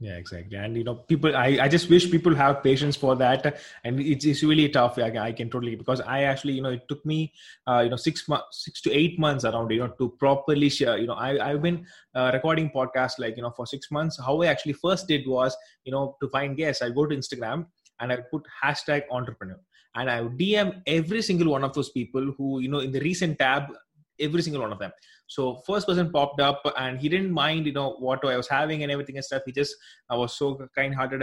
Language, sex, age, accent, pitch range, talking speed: English, male, 20-39, Indian, 125-155 Hz, 240 wpm